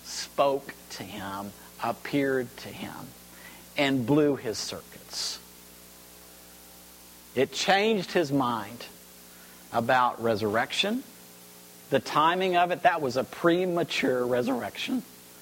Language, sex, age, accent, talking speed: English, male, 50-69, American, 95 wpm